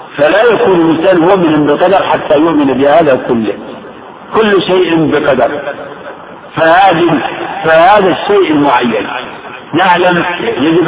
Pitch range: 165-195 Hz